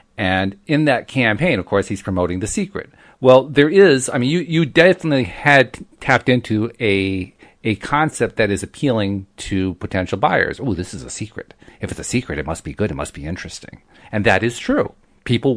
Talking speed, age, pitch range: 200 wpm, 40-59, 100-150 Hz